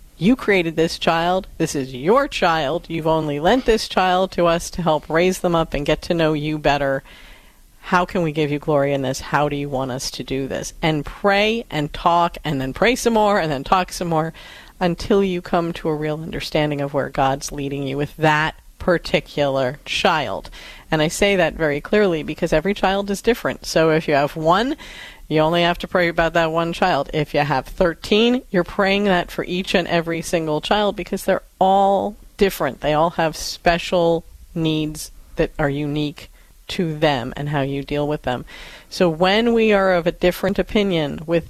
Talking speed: 200 wpm